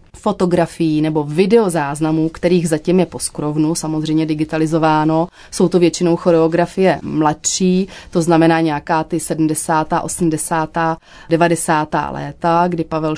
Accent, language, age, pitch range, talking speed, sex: native, Czech, 30-49, 155-175 Hz, 115 wpm, female